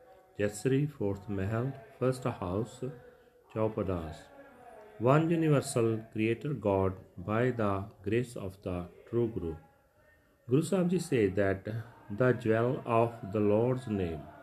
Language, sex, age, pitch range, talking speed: Punjabi, male, 40-59, 100-135 Hz, 115 wpm